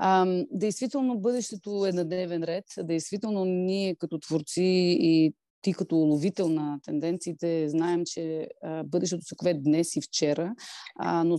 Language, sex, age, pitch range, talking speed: Bulgarian, female, 30-49, 160-195 Hz, 120 wpm